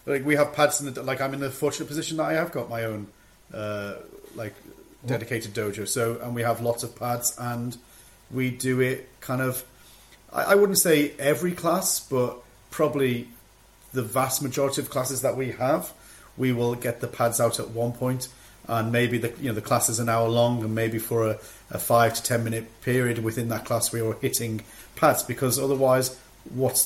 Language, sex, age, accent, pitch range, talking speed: English, male, 30-49, British, 120-145 Hz, 205 wpm